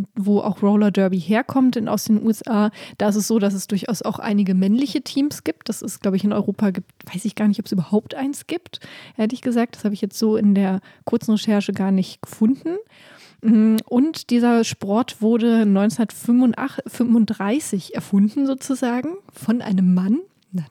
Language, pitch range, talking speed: German, 205-245 Hz, 180 wpm